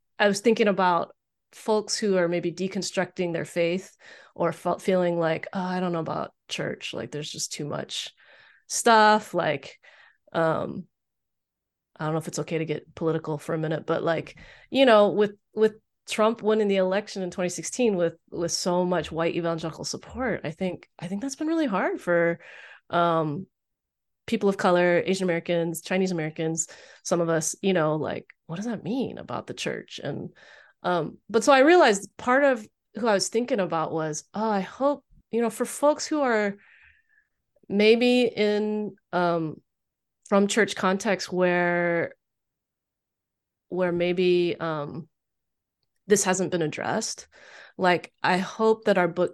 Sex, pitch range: female, 165-215 Hz